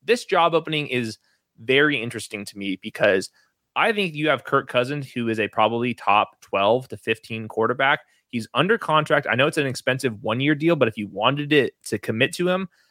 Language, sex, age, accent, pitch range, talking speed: English, male, 20-39, American, 120-155 Hz, 200 wpm